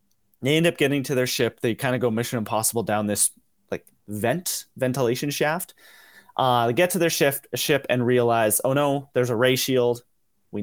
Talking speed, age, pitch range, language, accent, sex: 190 wpm, 30-49, 115-140 Hz, English, American, male